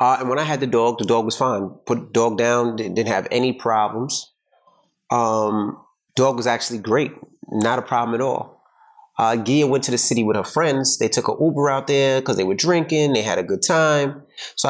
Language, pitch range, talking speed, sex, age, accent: English, 115-140 Hz, 225 wpm, male, 30-49, American